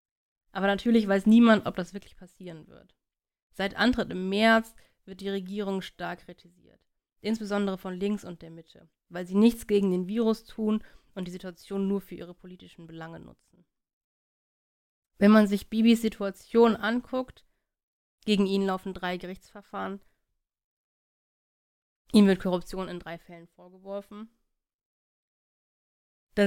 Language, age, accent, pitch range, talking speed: German, 30-49, German, 180-205 Hz, 135 wpm